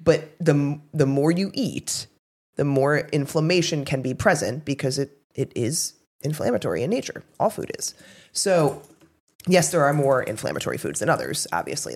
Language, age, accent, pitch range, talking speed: English, 20-39, American, 130-160 Hz, 160 wpm